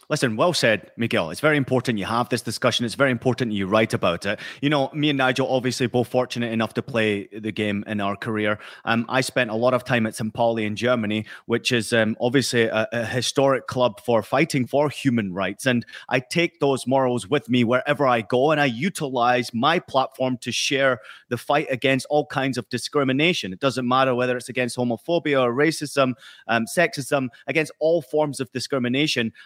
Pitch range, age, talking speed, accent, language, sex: 125-165 Hz, 30-49, 200 wpm, British, English, male